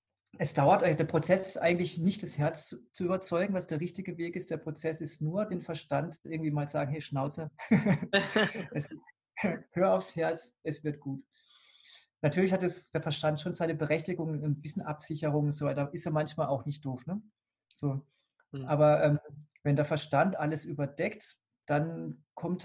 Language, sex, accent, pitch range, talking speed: German, male, German, 145-170 Hz, 180 wpm